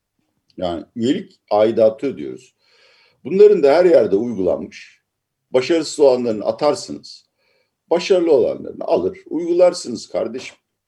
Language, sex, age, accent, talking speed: Turkish, male, 60-79, native, 95 wpm